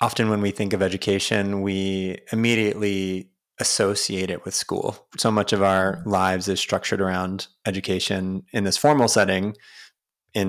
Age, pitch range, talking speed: 20-39, 95-110 Hz, 150 wpm